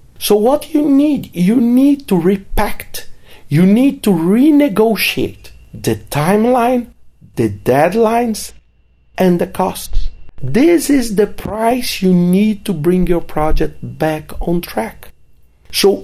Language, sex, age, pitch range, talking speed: English, male, 50-69, 165-235 Hz, 125 wpm